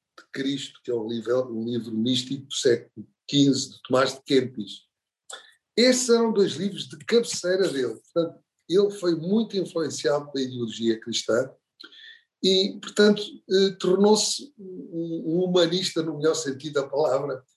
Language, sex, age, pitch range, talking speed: Portuguese, male, 50-69, 135-195 Hz, 145 wpm